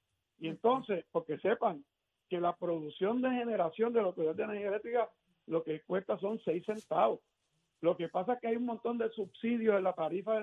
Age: 60-79